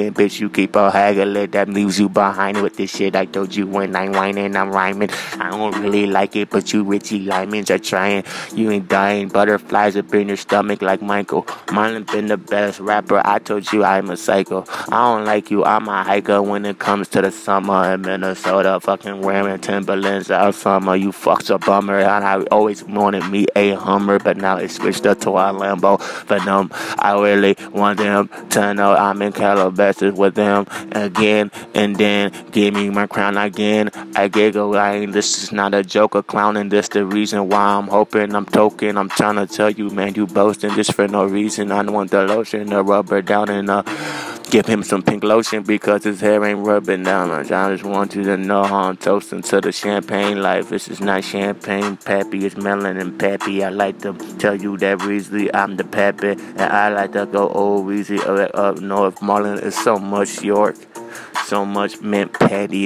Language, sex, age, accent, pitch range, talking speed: English, male, 20-39, American, 100-105 Hz, 205 wpm